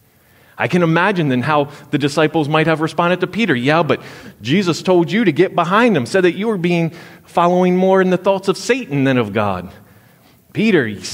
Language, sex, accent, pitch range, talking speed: English, male, American, 130-195 Hz, 200 wpm